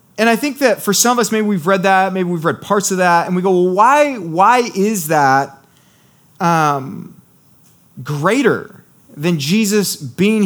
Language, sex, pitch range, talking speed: English, male, 165-205 Hz, 180 wpm